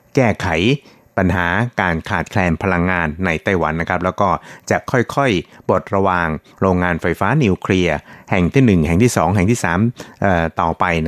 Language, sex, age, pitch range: Thai, male, 60-79, 85-105 Hz